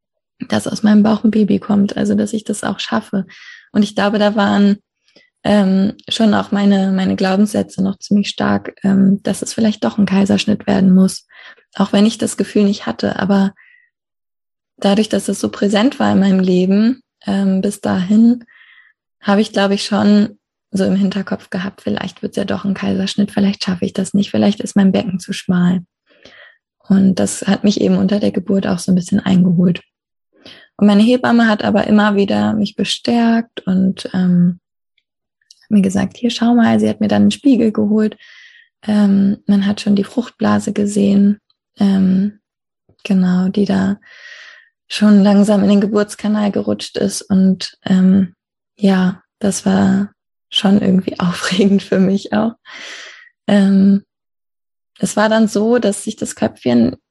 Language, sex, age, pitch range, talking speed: German, female, 20-39, 195-215 Hz, 165 wpm